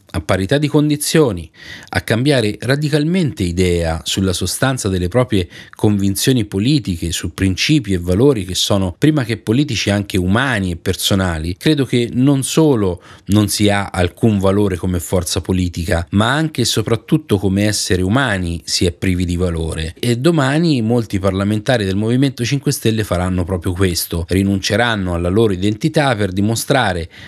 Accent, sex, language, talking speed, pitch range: native, male, Italian, 150 wpm, 95-120 Hz